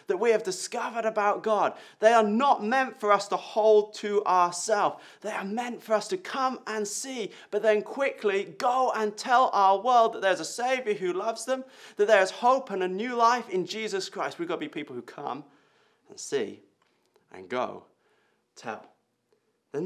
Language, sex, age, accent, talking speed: English, male, 30-49, British, 190 wpm